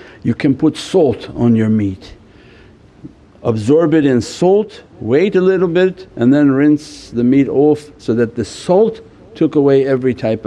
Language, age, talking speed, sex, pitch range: English, 60-79, 165 wpm, male, 110-150 Hz